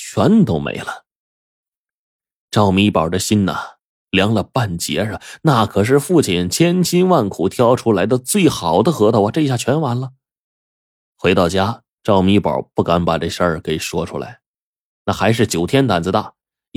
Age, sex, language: 20-39, male, Chinese